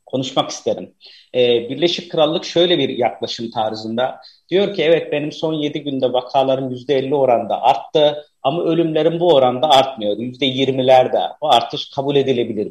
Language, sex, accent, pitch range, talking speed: Turkish, male, native, 125-155 Hz, 140 wpm